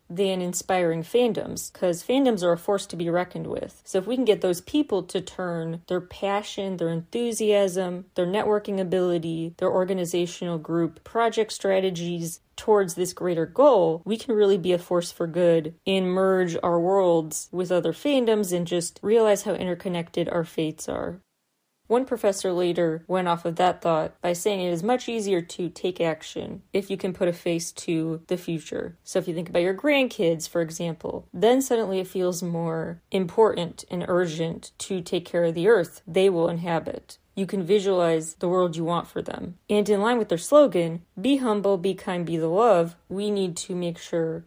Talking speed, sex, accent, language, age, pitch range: 190 wpm, female, American, English, 30-49, 170-200 Hz